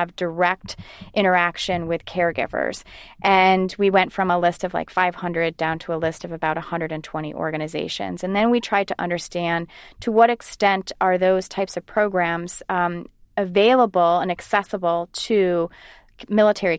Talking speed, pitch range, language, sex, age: 150 wpm, 170-205 Hz, English, female, 30-49